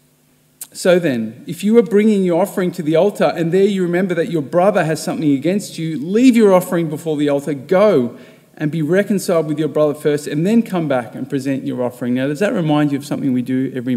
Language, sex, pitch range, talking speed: English, male, 135-180 Hz, 230 wpm